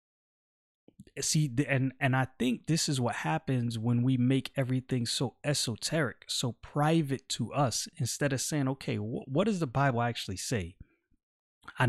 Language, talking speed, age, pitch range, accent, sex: English, 155 wpm, 30-49, 115-150 Hz, American, male